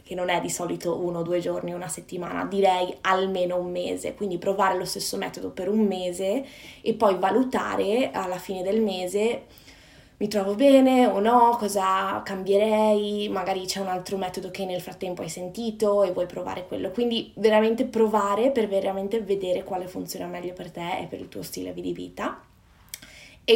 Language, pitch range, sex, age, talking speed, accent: Italian, 185-215 Hz, female, 20-39, 175 wpm, native